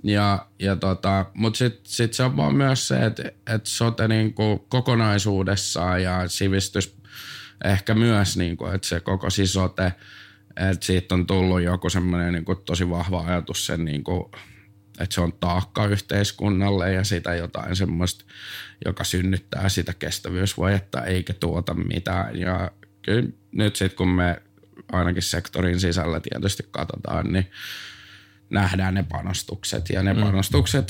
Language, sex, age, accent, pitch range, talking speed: Finnish, male, 20-39, native, 90-105 Hz, 135 wpm